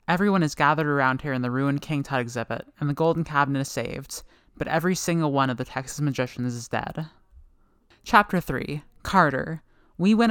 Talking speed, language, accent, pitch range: 185 wpm, English, American, 130-165 Hz